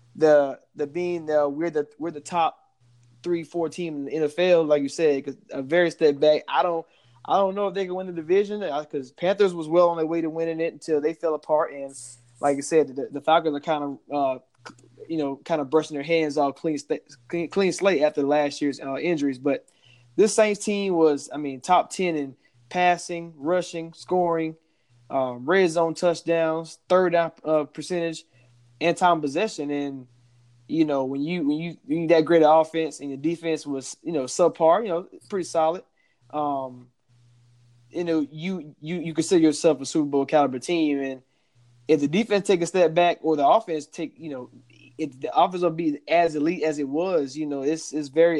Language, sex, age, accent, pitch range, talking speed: English, male, 20-39, American, 140-170 Hz, 205 wpm